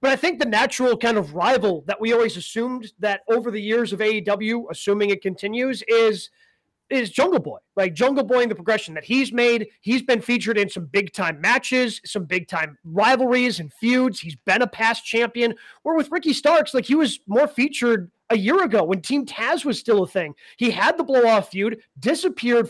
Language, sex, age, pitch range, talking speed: English, male, 30-49, 195-255 Hz, 210 wpm